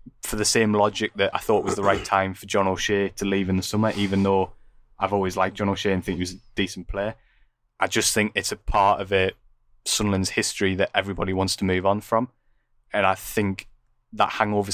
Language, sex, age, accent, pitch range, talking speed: English, male, 20-39, British, 95-105 Hz, 220 wpm